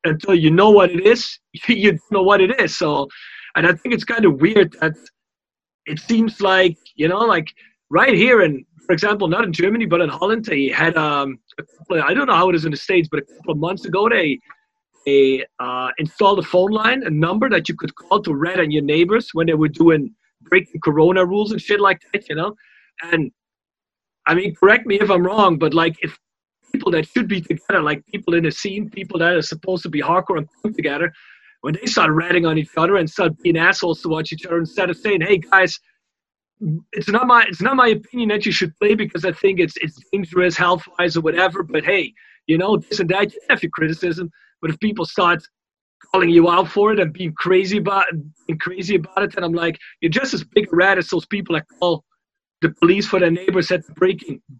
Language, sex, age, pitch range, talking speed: English, male, 30-49, 160-200 Hz, 230 wpm